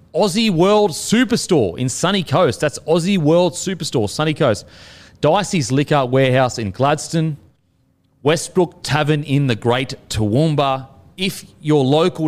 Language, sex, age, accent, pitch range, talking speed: English, male, 30-49, Australian, 110-155 Hz, 125 wpm